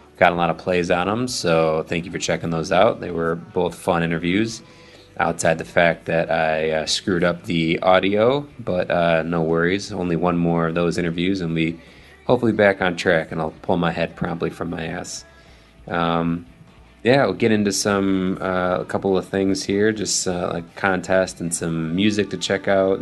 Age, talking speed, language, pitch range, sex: 20-39, 200 wpm, English, 80-95 Hz, male